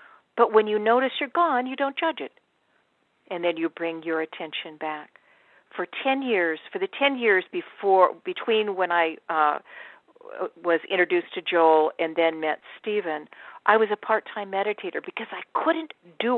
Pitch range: 165-235 Hz